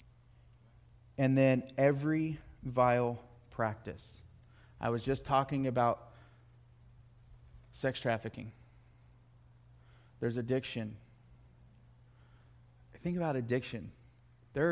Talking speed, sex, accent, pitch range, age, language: 75 wpm, male, American, 120-170 Hz, 30-49, English